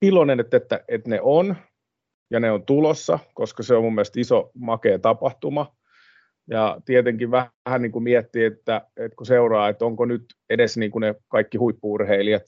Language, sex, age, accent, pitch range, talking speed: Finnish, male, 30-49, native, 100-115 Hz, 175 wpm